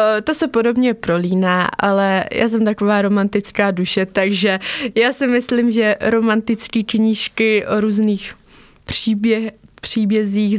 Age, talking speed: 20-39, 115 wpm